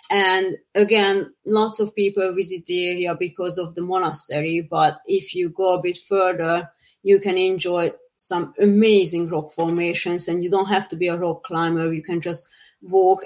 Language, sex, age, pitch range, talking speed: English, female, 30-49, 170-195 Hz, 175 wpm